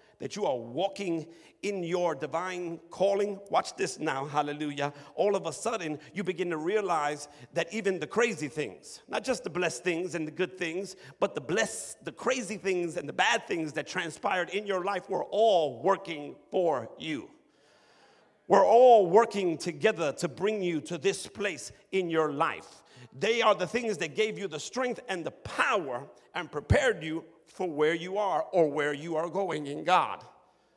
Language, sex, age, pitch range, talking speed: English, male, 50-69, 165-215 Hz, 180 wpm